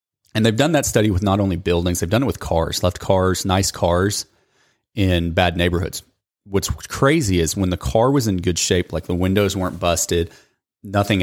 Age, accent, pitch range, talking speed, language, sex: 30-49, American, 85-105 Hz, 200 wpm, English, male